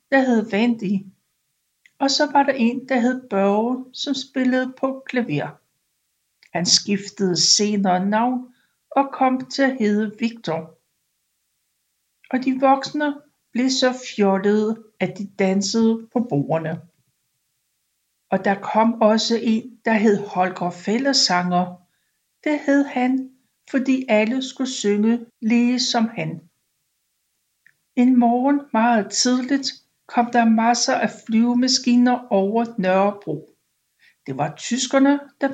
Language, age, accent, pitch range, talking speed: Danish, 60-79, native, 195-255 Hz, 120 wpm